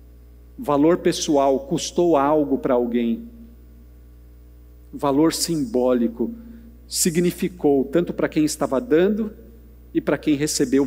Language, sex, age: Portuguese, male, 50-69